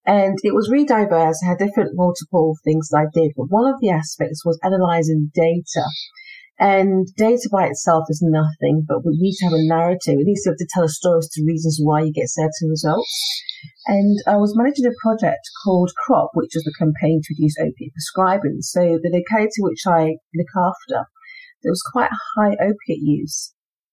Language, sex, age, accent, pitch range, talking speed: English, female, 30-49, British, 165-220 Hz, 200 wpm